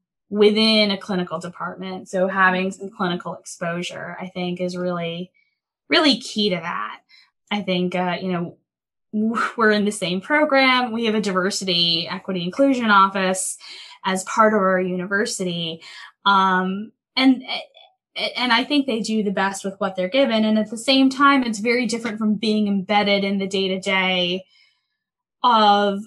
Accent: American